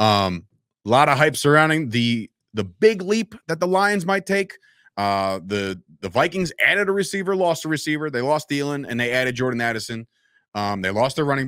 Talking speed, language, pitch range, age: 200 wpm, English, 115-155 Hz, 30-49